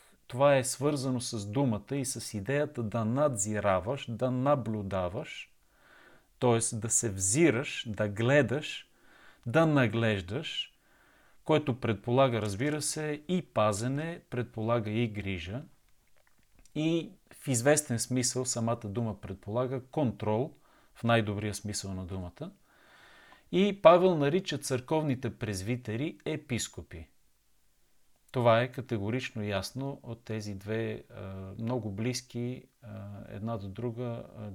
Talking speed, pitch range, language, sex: 110 wpm, 110-140 Hz, Bulgarian, male